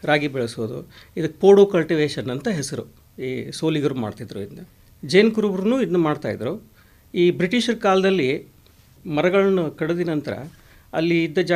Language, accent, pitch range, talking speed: Hindi, native, 150-195 Hz, 65 wpm